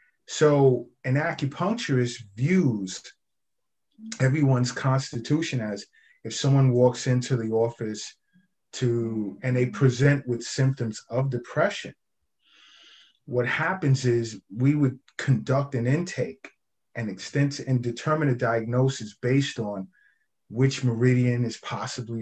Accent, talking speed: American, 110 wpm